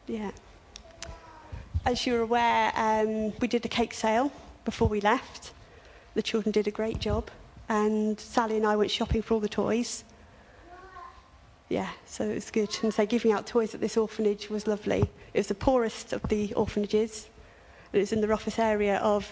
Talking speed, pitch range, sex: 180 wpm, 200-225 Hz, female